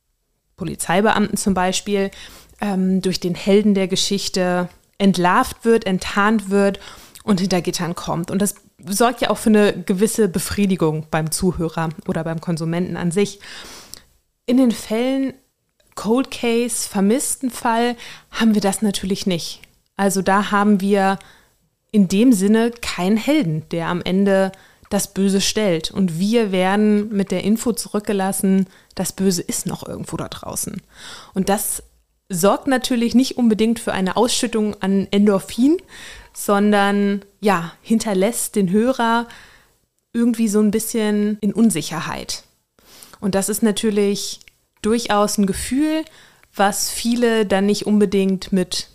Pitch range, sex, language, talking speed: 185-220 Hz, female, German, 130 wpm